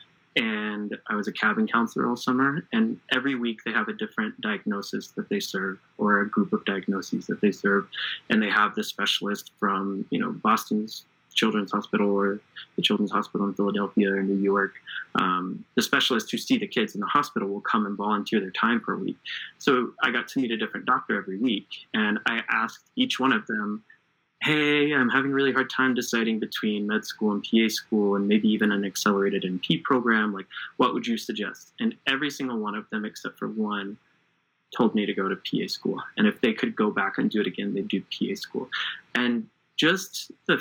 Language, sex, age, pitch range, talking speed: English, male, 20-39, 100-130 Hz, 210 wpm